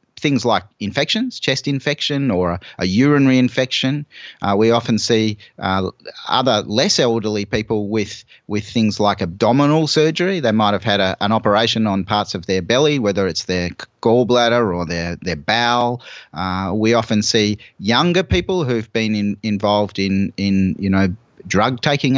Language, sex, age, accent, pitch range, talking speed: English, male, 30-49, Australian, 100-130 Hz, 160 wpm